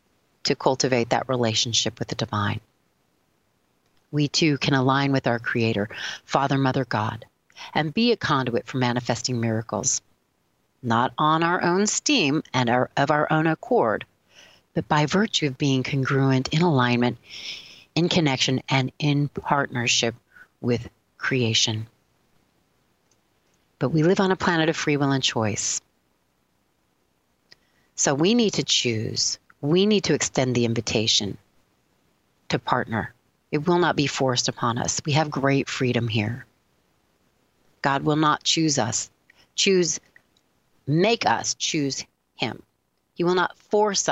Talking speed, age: 135 wpm, 40-59